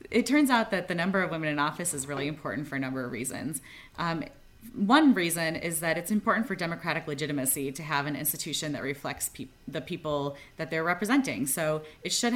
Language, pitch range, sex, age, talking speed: English, 145-185 Hz, female, 30-49, 200 wpm